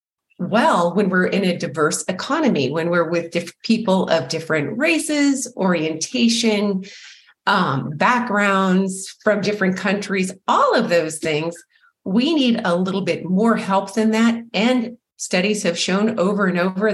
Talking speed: 140 wpm